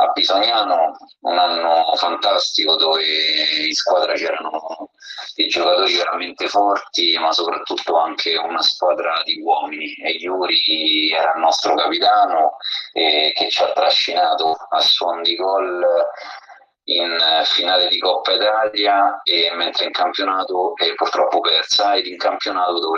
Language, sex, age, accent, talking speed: Italian, male, 30-49, native, 135 wpm